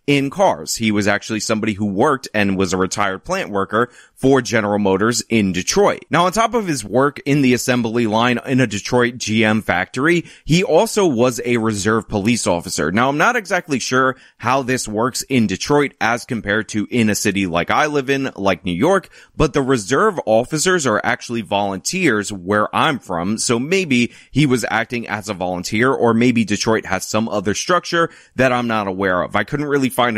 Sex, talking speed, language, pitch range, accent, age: male, 195 wpm, English, 105-145 Hz, American, 30-49